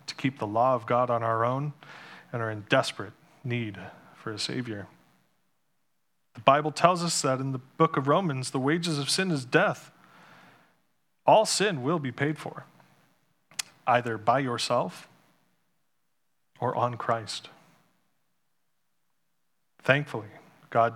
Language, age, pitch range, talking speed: English, 30-49, 115-145 Hz, 135 wpm